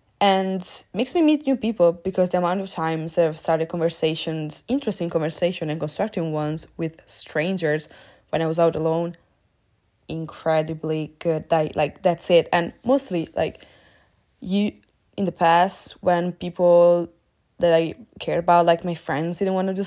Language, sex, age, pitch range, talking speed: English, female, 20-39, 165-195 Hz, 155 wpm